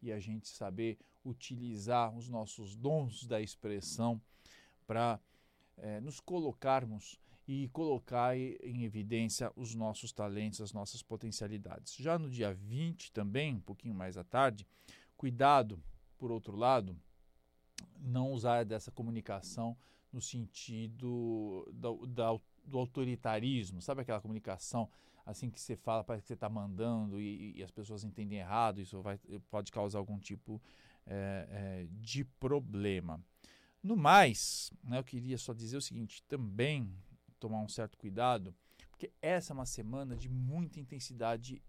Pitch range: 105-125 Hz